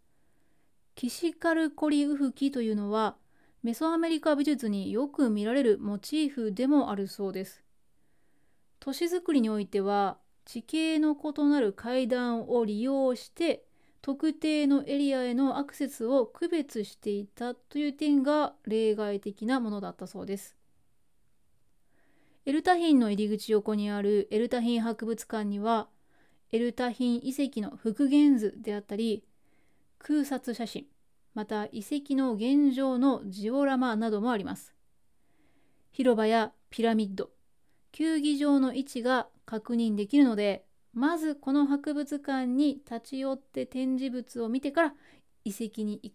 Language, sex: Japanese, female